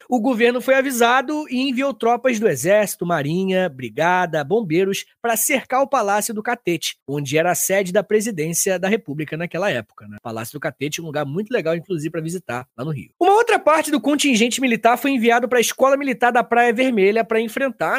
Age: 20-39